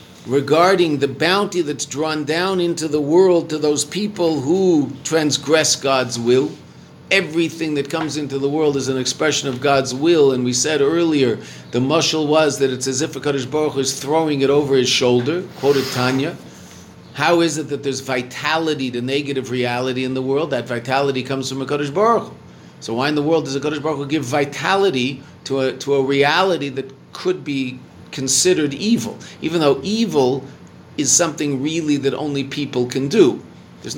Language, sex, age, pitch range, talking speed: English, male, 50-69, 125-155 Hz, 180 wpm